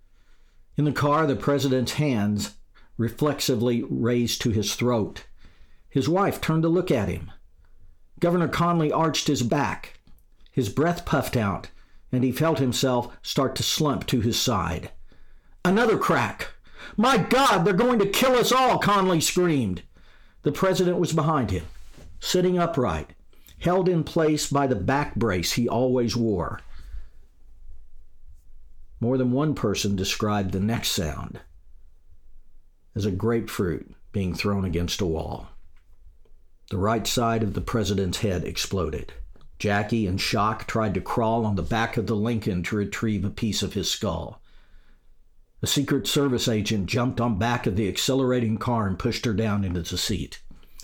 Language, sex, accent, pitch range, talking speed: English, male, American, 95-130 Hz, 150 wpm